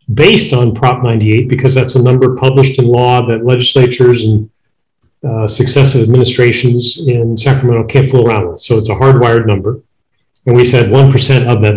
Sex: male